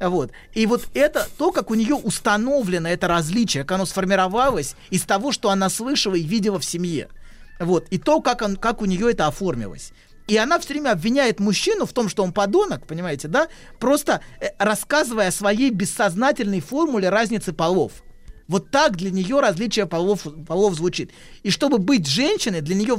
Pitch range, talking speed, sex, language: 185-250 Hz, 175 wpm, male, Russian